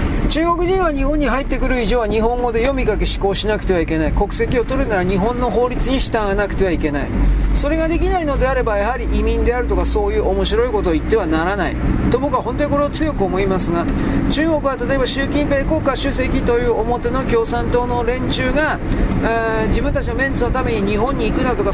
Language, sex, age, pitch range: Japanese, male, 40-59, 220-285 Hz